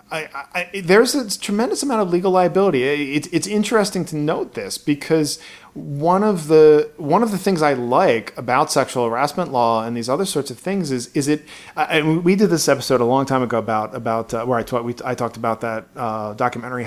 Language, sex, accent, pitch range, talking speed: English, male, American, 120-160 Hz, 205 wpm